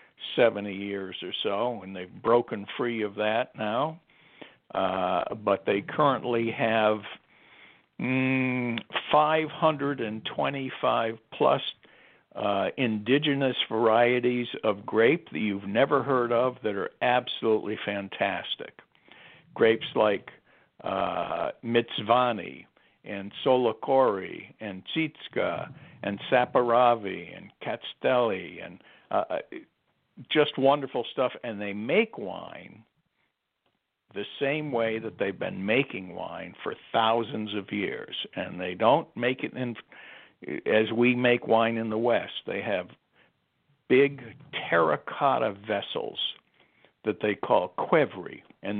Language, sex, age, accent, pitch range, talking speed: English, male, 60-79, American, 110-135 Hz, 110 wpm